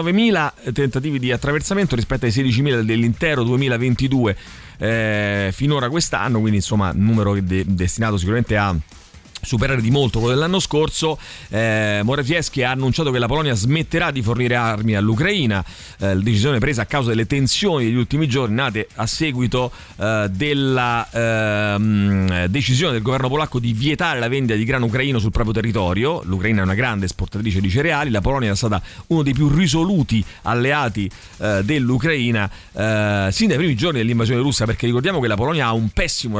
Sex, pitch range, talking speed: male, 105-140 Hz, 165 wpm